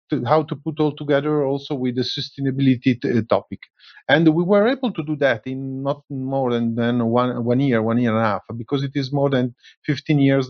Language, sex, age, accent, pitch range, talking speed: German, male, 40-59, Italian, 120-145 Hz, 205 wpm